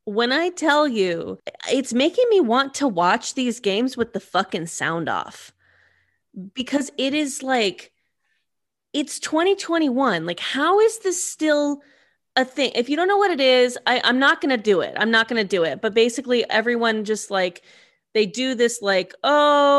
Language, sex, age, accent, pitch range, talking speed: English, female, 20-39, American, 205-275 Hz, 180 wpm